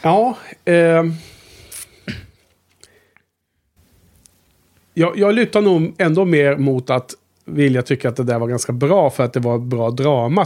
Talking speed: 145 wpm